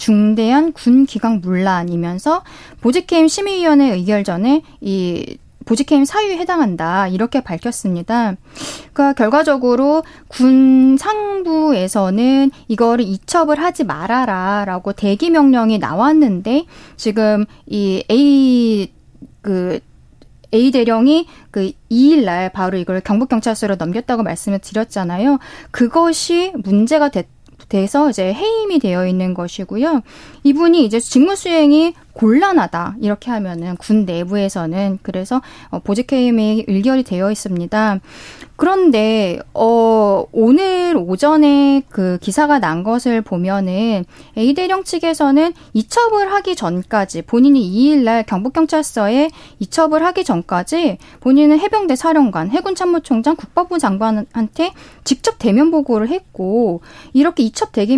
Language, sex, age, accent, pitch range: Korean, female, 20-39, native, 205-305 Hz